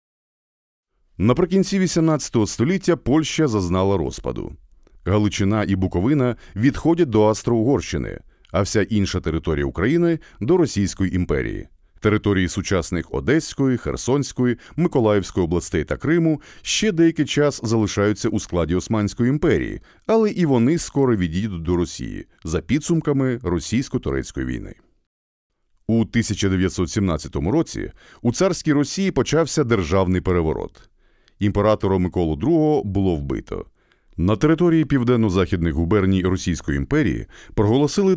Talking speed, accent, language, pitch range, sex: 110 wpm, native, Ukrainian, 95-145 Hz, male